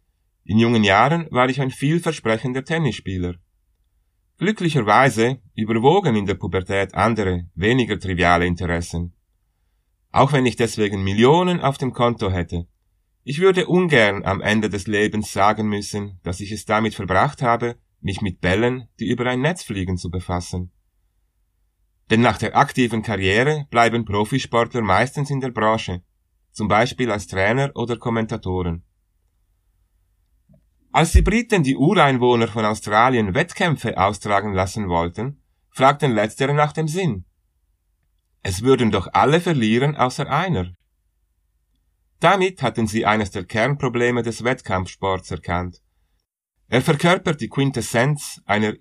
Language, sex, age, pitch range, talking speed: German, male, 30-49, 90-125 Hz, 130 wpm